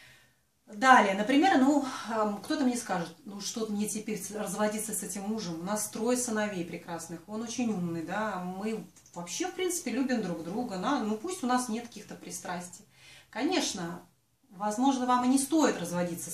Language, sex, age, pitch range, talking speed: Russian, female, 30-49, 175-250 Hz, 160 wpm